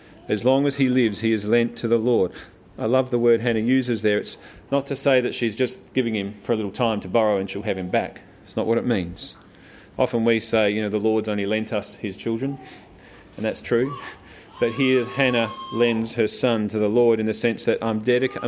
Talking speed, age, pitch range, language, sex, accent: 235 wpm, 40-59, 100-135 Hz, English, male, Australian